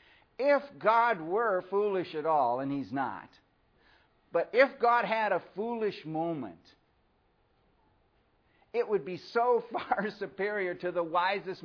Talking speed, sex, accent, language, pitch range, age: 130 wpm, male, American, English, 160-225 Hz, 50-69